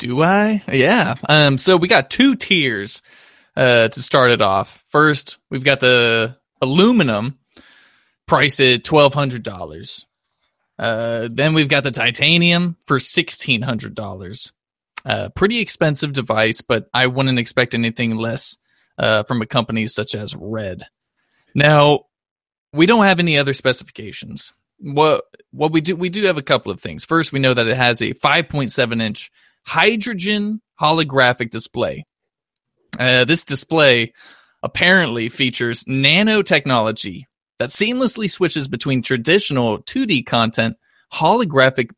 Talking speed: 140 wpm